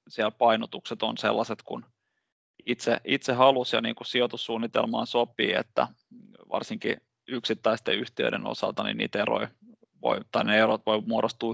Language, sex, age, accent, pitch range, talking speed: Finnish, male, 20-39, native, 120-145 Hz, 140 wpm